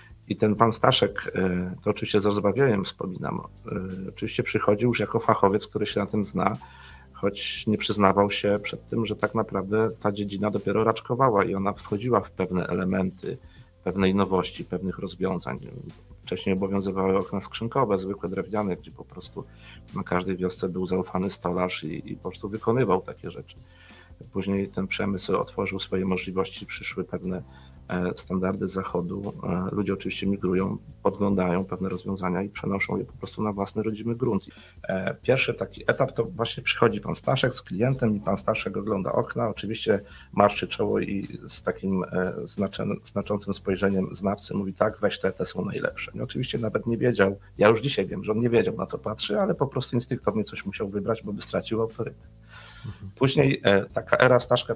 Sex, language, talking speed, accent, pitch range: male, Polish, 165 wpm, native, 95-110 Hz